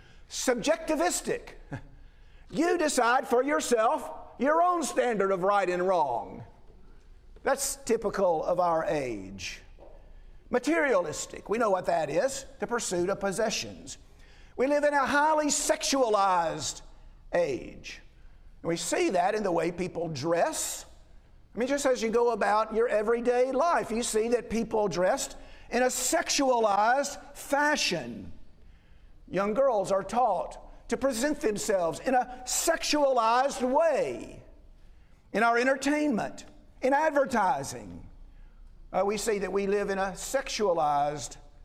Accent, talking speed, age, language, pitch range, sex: American, 125 wpm, 50-69, English, 195-275 Hz, male